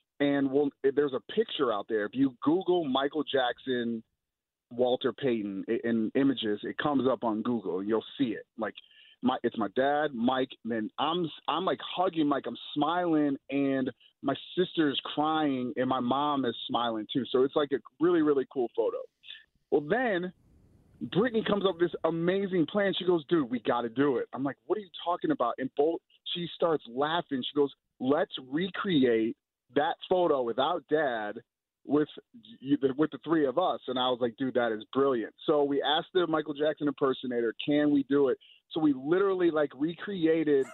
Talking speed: 185 wpm